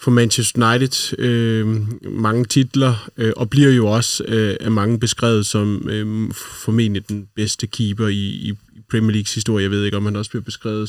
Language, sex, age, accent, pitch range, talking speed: Danish, male, 20-39, native, 105-120 Hz, 185 wpm